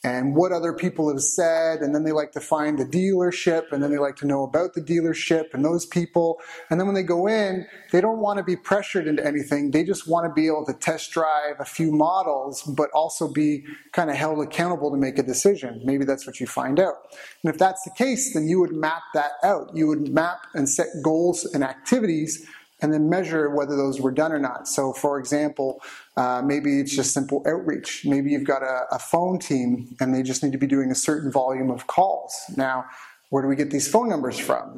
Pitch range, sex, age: 140-170 Hz, male, 30-49